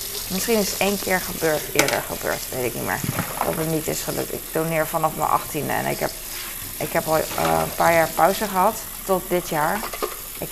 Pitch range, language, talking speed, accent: 160-195 Hz, Dutch, 215 wpm, Dutch